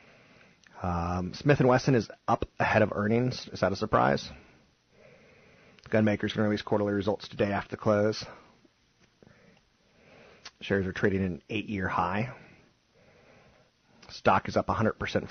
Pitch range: 90-110 Hz